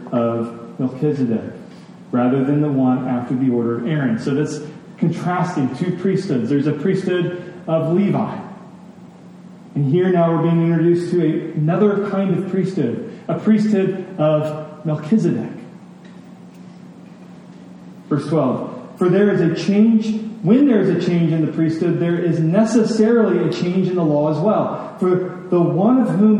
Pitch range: 165-205 Hz